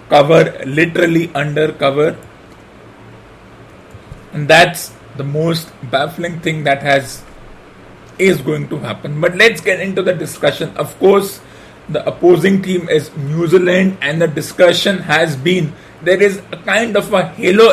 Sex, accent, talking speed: male, Indian, 140 wpm